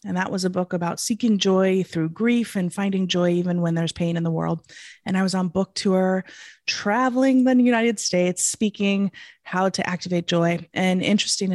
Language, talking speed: English, 190 wpm